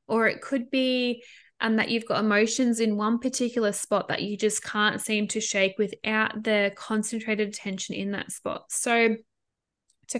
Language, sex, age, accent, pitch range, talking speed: English, female, 10-29, Australian, 210-245 Hz, 170 wpm